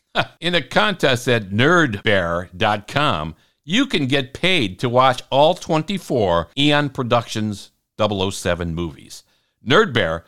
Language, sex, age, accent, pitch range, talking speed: English, male, 60-79, American, 95-140 Hz, 105 wpm